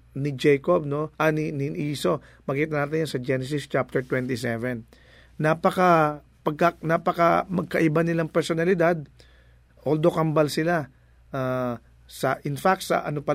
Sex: male